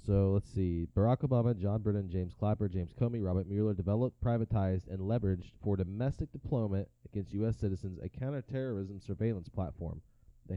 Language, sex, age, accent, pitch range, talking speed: English, male, 20-39, American, 95-115 Hz, 160 wpm